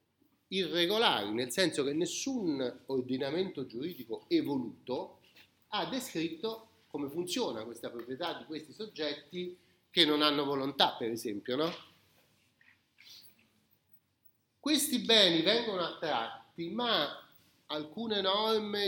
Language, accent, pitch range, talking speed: Italian, native, 120-175 Hz, 100 wpm